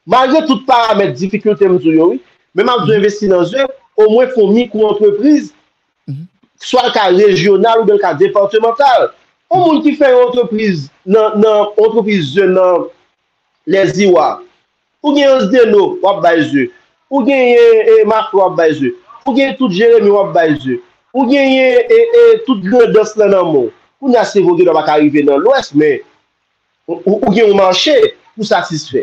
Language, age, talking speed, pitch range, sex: French, 50-69, 85 wpm, 190-275 Hz, male